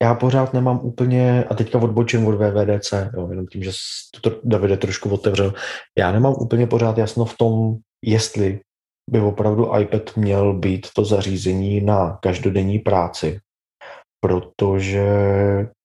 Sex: male